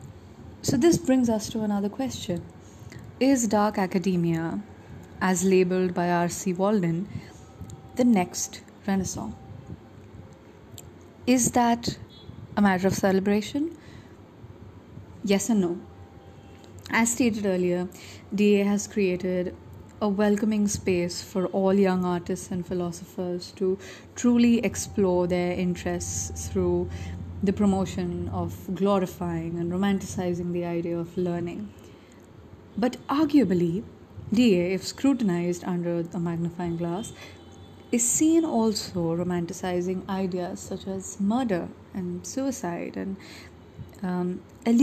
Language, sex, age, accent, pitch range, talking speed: English, female, 30-49, Indian, 170-210 Hz, 105 wpm